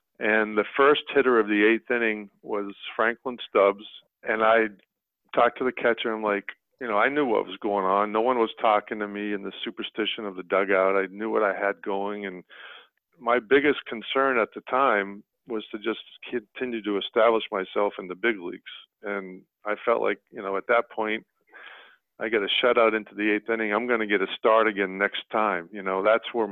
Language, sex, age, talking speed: English, male, 50-69, 210 wpm